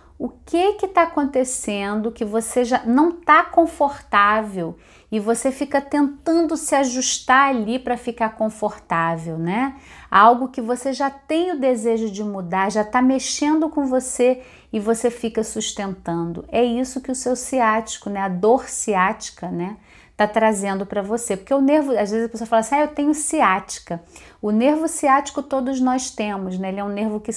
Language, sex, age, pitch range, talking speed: Portuguese, female, 40-59, 215-270 Hz, 175 wpm